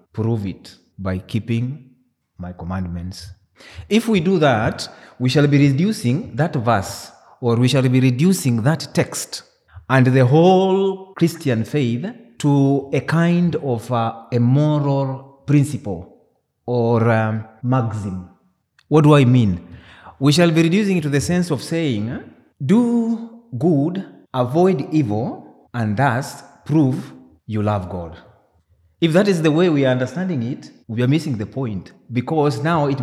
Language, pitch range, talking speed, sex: English, 115-160 Hz, 140 wpm, male